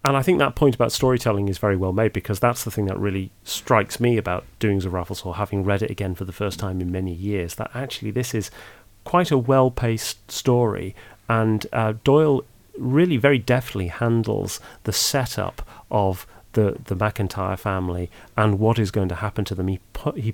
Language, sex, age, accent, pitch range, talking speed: English, male, 40-59, British, 95-120 Hz, 200 wpm